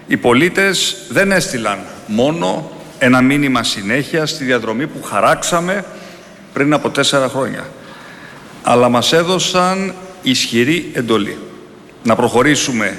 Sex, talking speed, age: male, 105 wpm, 50-69